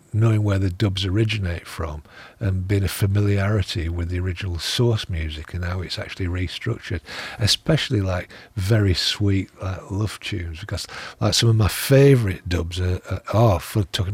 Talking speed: 165 wpm